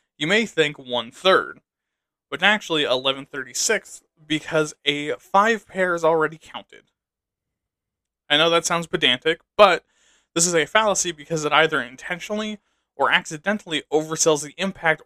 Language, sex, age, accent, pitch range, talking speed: English, male, 20-39, American, 145-180 Hz, 130 wpm